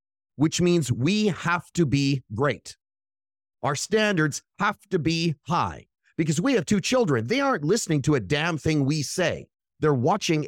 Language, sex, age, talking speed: English, male, 30-49, 165 wpm